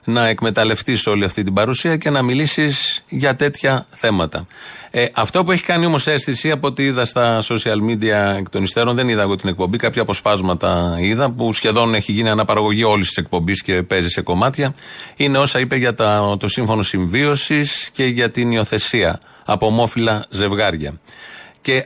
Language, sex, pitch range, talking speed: Greek, male, 105-140 Hz, 175 wpm